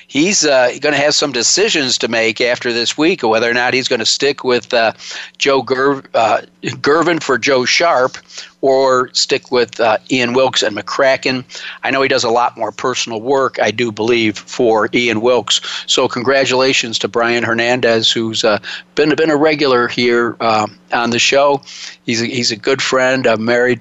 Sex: male